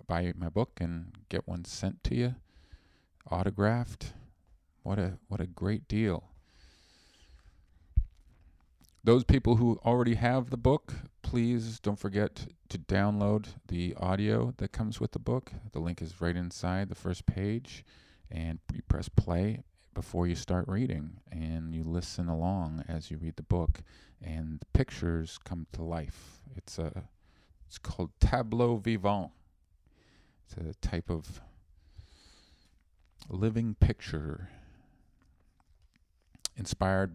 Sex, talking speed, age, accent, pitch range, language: male, 125 wpm, 40-59, American, 80-105 Hz, English